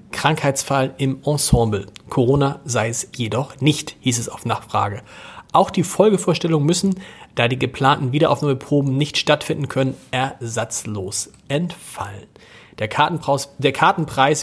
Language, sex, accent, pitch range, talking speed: German, male, German, 125-155 Hz, 110 wpm